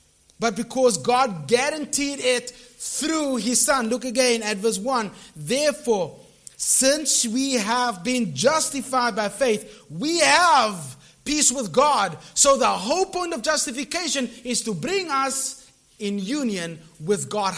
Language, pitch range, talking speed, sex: English, 190-260 Hz, 135 wpm, male